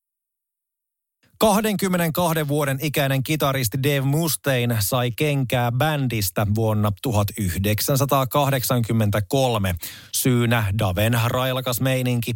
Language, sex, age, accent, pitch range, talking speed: Finnish, male, 30-49, native, 110-135 Hz, 70 wpm